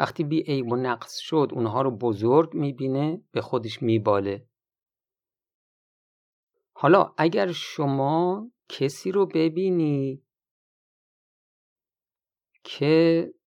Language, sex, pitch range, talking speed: Persian, male, 115-160 Hz, 85 wpm